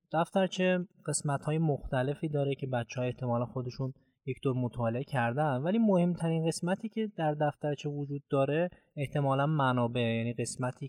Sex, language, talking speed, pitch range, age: male, Persian, 140 wpm, 125-155 Hz, 20-39